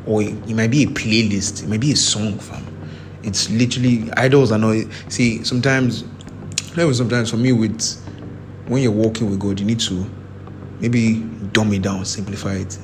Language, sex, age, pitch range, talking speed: English, male, 20-39, 100-110 Hz, 175 wpm